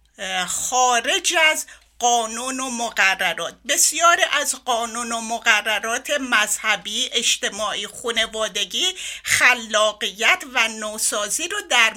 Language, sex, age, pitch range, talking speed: Persian, female, 50-69, 230-325 Hz, 90 wpm